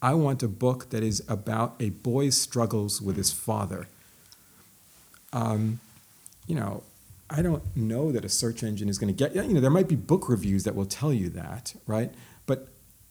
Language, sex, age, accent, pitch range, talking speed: English, male, 40-59, American, 100-140 Hz, 190 wpm